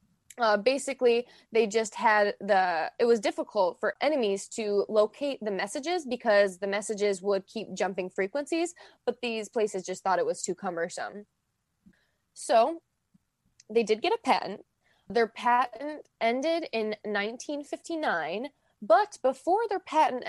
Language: English